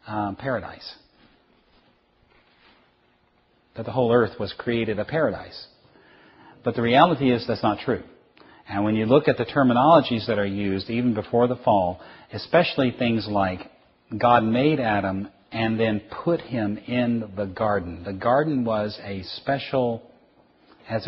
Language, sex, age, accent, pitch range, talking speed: English, male, 40-59, American, 95-115 Hz, 140 wpm